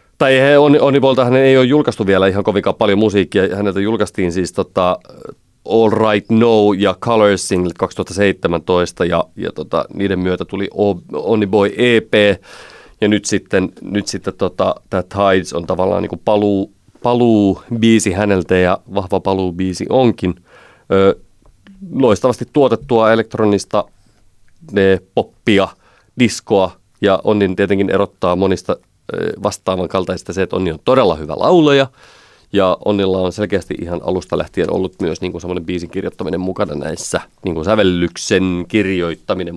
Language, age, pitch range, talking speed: Finnish, 30-49, 90-115 Hz, 130 wpm